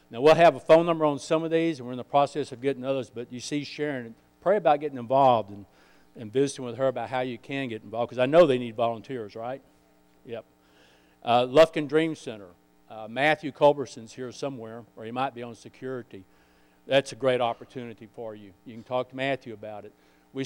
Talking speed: 215 wpm